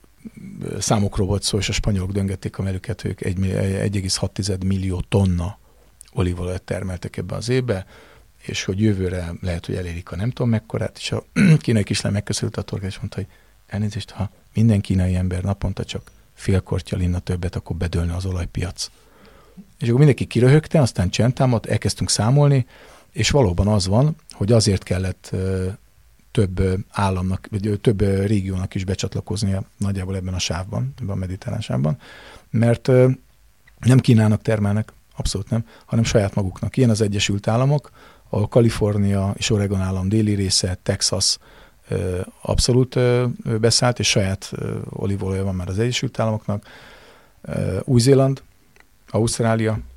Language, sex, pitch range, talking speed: Hungarian, male, 95-115 Hz, 135 wpm